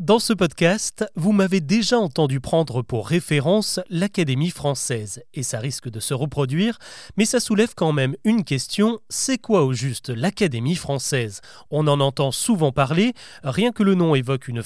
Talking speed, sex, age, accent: 170 wpm, male, 30-49, French